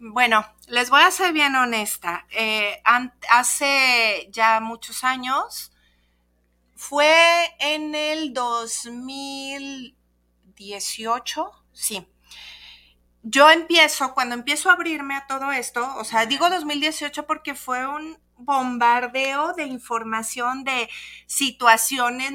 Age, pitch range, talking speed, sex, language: 40-59, 225-280 Hz, 105 wpm, female, Spanish